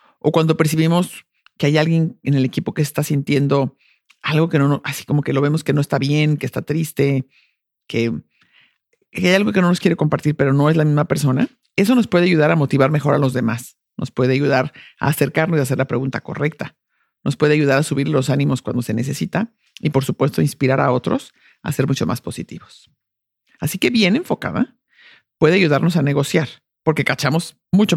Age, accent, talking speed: 50-69, Mexican, 200 wpm